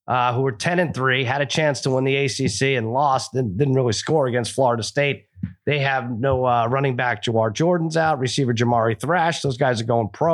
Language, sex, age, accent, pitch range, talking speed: English, male, 30-49, American, 120-150 Hz, 220 wpm